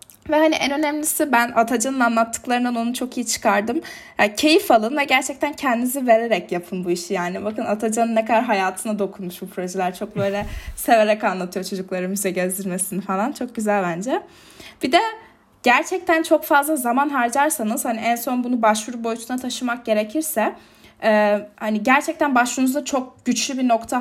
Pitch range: 210-260 Hz